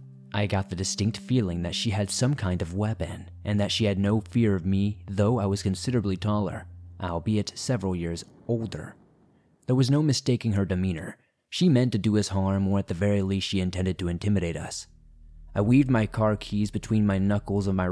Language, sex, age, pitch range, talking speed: English, male, 20-39, 85-110 Hz, 205 wpm